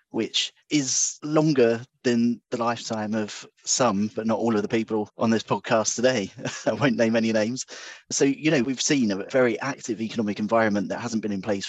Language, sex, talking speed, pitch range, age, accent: English, male, 195 wpm, 105-120 Hz, 30-49, British